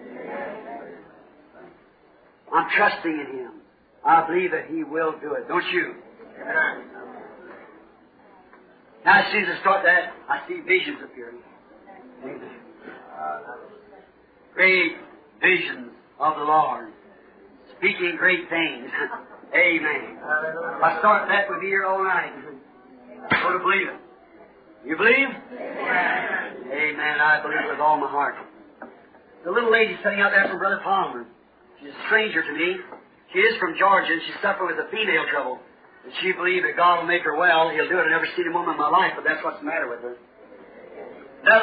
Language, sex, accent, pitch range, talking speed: English, male, American, 170-275 Hz, 155 wpm